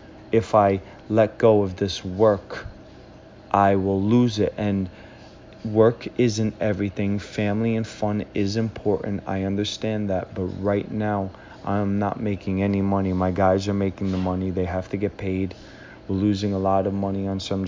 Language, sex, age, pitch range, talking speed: English, male, 30-49, 95-105 Hz, 170 wpm